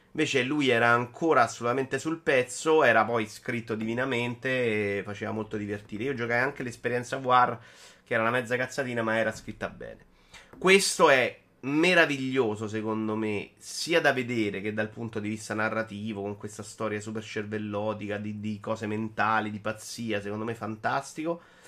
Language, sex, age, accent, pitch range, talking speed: Italian, male, 30-49, native, 110-140 Hz, 160 wpm